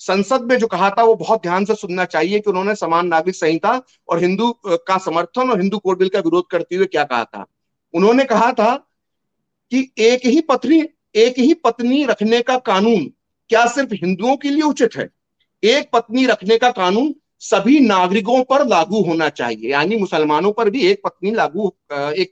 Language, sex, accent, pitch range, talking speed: English, male, Indian, 190-250 Hz, 175 wpm